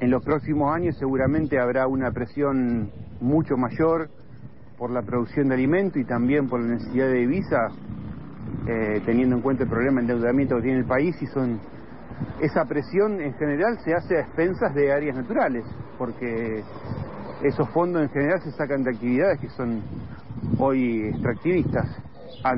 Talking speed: 160 wpm